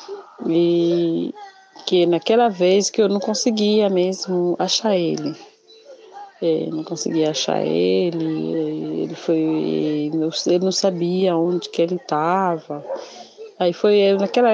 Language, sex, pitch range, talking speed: Portuguese, female, 180-250 Hz, 105 wpm